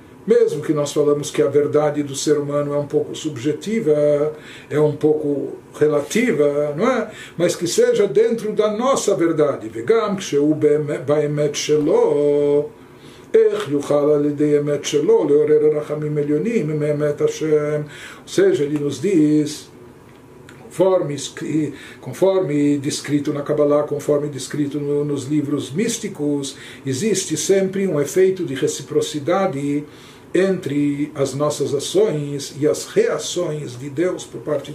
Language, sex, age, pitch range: Portuguese, male, 60-79, 145-190 Hz